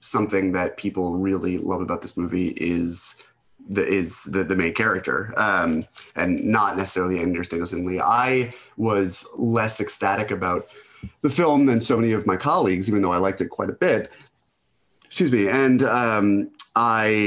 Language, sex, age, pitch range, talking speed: English, male, 30-49, 90-105 Hz, 165 wpm